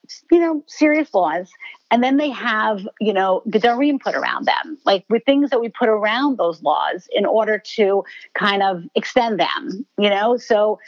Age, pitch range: 50-69, 190-270 Hz